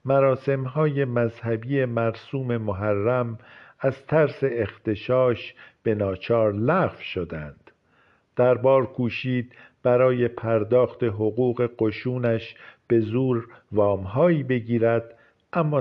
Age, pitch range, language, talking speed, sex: 50-69, 110-130 Hz, Persian, 85 wpm, male